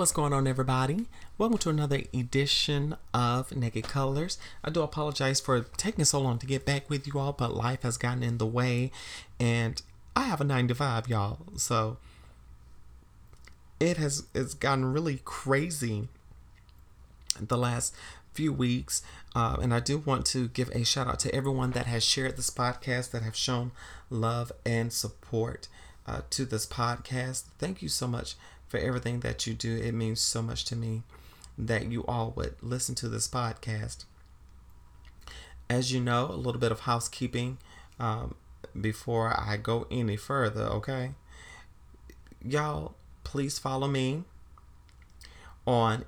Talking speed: 155 wpm